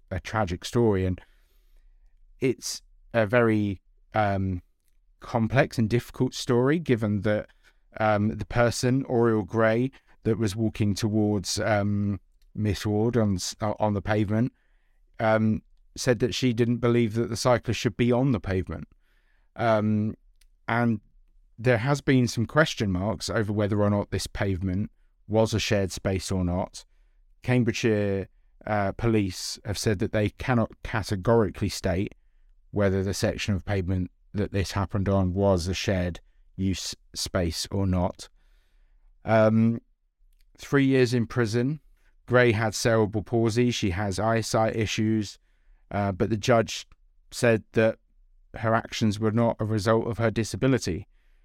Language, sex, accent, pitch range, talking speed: English, male, British, 95-115 Hz, 140 wpm